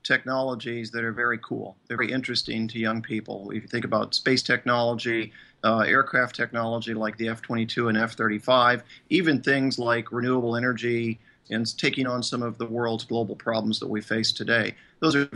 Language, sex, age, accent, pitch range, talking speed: English, male, 40-59, American, 115-130 Hz, 185 wpm